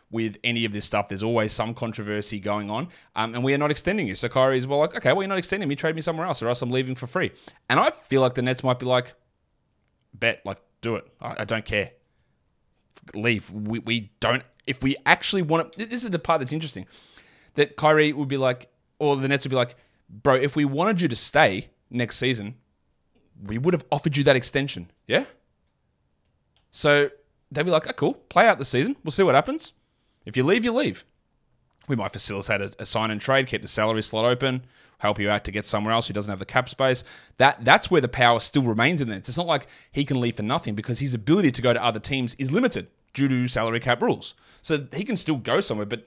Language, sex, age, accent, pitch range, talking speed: English, male, 20-39, Australian, 110-145 Hz, 235 wpm